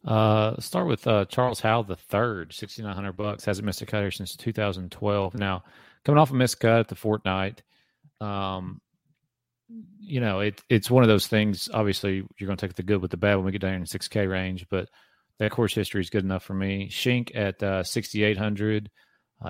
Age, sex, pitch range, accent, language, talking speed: 30-49, male, 95-110 Hz, American, English, 205 wpm